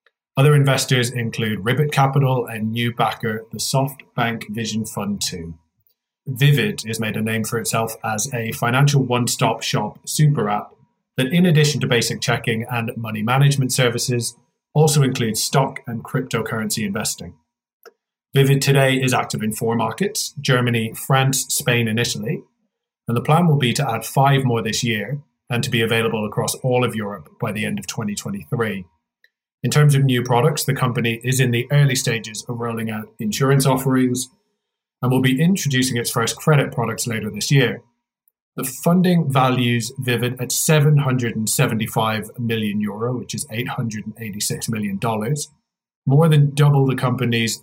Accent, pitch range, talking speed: British, 115-140 Hz, 155 wpm